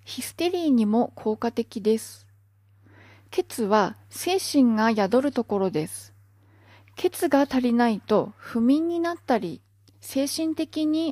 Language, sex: Japanese, female